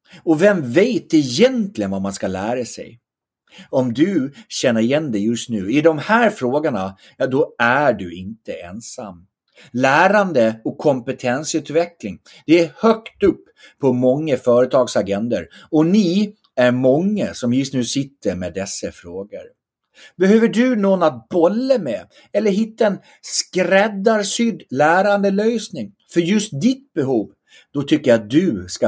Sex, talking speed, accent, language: male, 145 wpm, Swedish, English